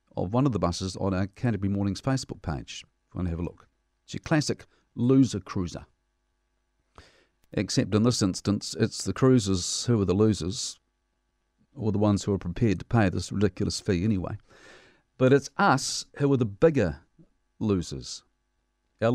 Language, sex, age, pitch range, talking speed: English, male, 50-69, 100-135 Hz, 170 wpm